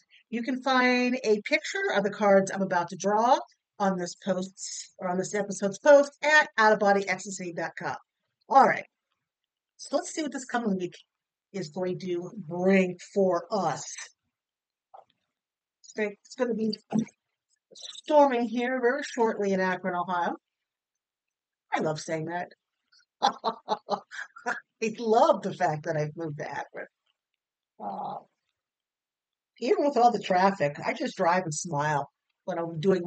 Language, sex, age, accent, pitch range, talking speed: English, female, 50-69, American, 180-230 Hz, 135 wpm